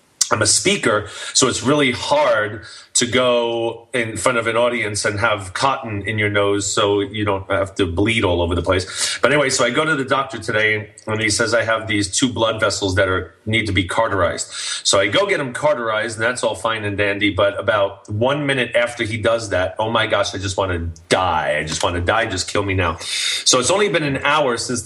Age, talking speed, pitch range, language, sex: 30-49, 235 wpm, 100-120 Hz, English, male